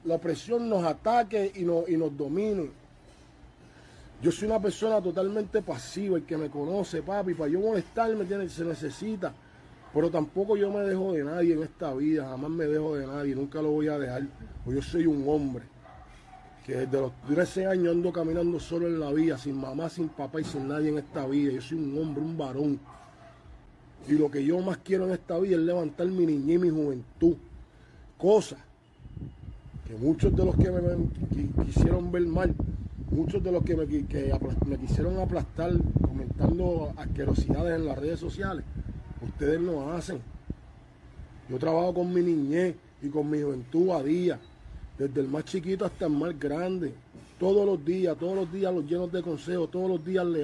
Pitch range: 145-180 Hz